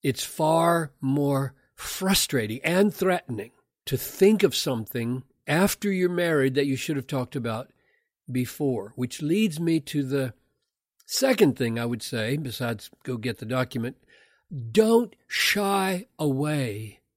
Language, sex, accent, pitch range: English, male, American, 125-165 Hz